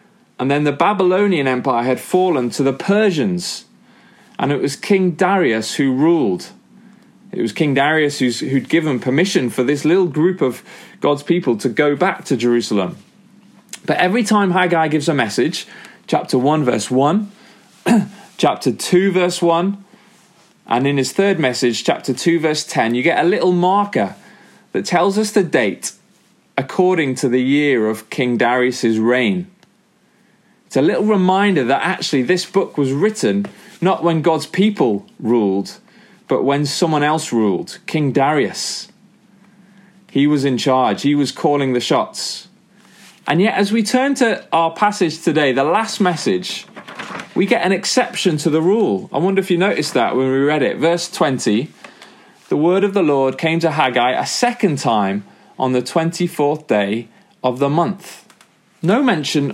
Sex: male